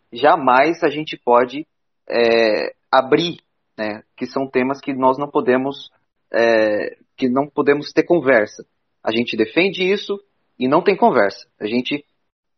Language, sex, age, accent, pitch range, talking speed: Portuguese, male, 30-49, Brazilian, 120-155 Hz, 145 wpm